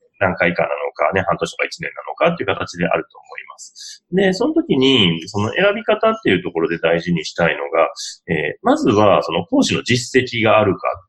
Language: Japanese